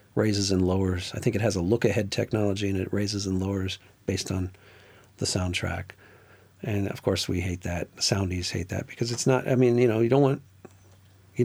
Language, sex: English, male